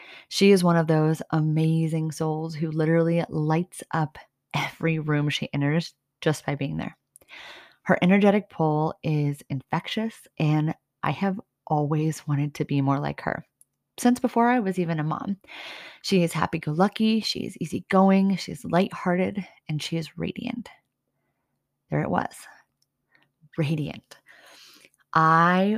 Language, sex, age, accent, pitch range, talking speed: English, female, 30-49, American, 155-185 Hz, 135 wpm